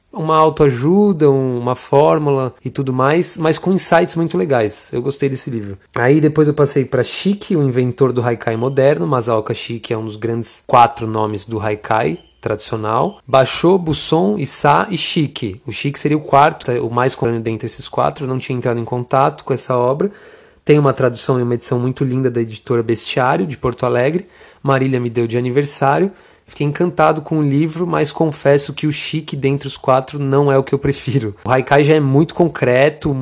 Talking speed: 195 wpm